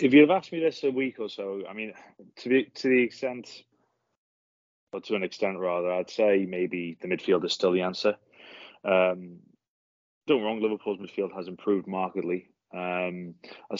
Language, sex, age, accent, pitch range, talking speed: English, male, 20-39, British, 90-105 Hz, 170 wpm